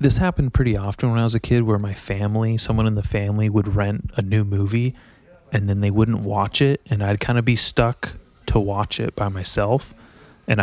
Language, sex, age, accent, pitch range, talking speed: English, male, 20-39, American, 100-120 Hz, 220 wpm